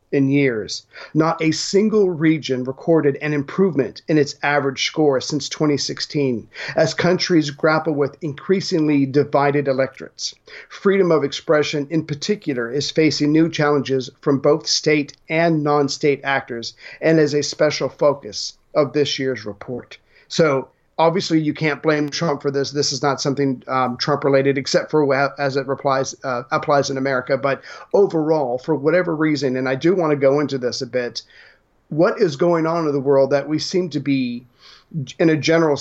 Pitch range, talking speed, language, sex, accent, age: 135-155 Hz, 165 wpm, English, male, American, 40-59